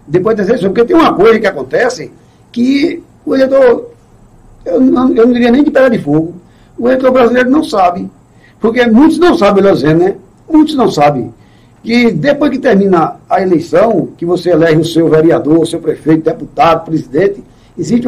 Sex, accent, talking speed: male, Brazilian, 170 wpm